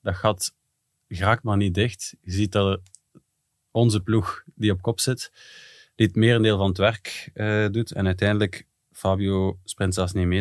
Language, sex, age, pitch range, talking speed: Dutch, male, 20-39, 90-105 Hz, 175 wpm